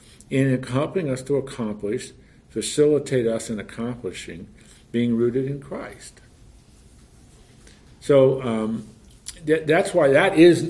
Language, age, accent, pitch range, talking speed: English, 50-69, American, 110-140 Hz, 110 wpm